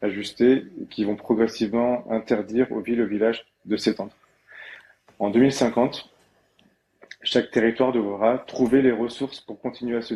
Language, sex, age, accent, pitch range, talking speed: French, male, 20-39, French, 105-125 Hz, 140 wpm